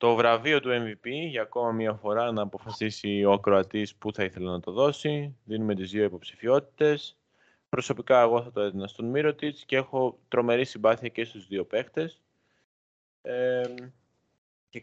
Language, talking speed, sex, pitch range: Greek, 160 wpm, male, 100-125 Hz